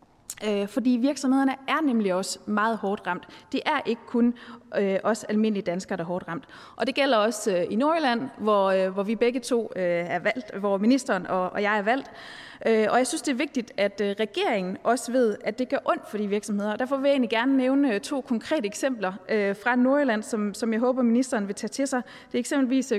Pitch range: 205-260 Hz